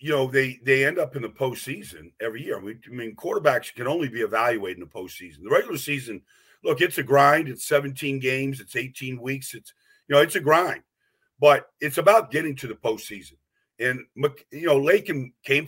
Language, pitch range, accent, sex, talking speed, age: English, 125-145 Hz, American, male, 200 wpm, 50-69